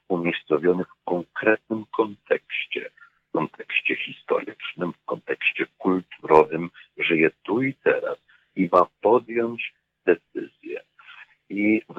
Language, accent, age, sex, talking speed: Polish, native, 50-69, male, 100 wpm